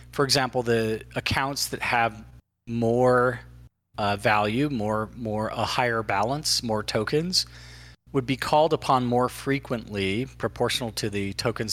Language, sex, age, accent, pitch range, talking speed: English, male, 40-59, American, 100-125 Hz, 135 wpm